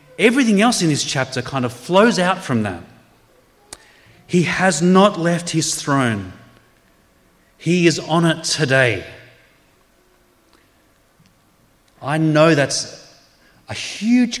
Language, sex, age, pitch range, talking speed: English, male, 30-49, 130-185 Hz, 110 wpm